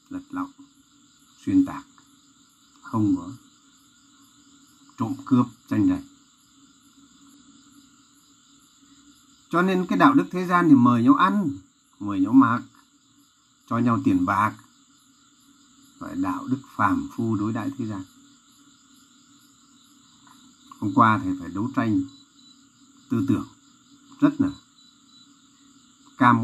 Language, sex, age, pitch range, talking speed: Vietnamese, male, 60-79, 265-275 Hz, 110 wpm